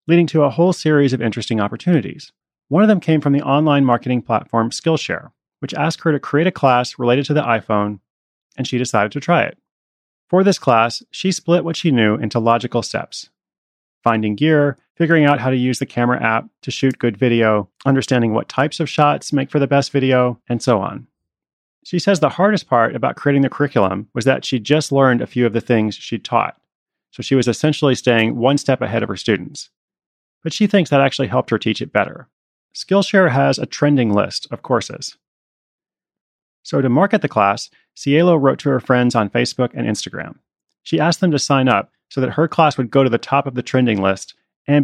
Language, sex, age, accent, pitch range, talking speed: English, male, 30-49, American, 115-150 Hz, 210 wpm